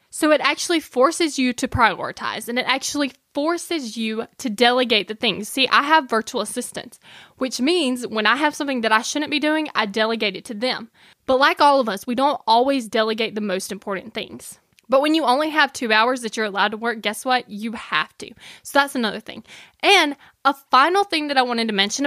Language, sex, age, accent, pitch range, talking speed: English, female, 10-29, American, 225-305 Hz, 220 wpm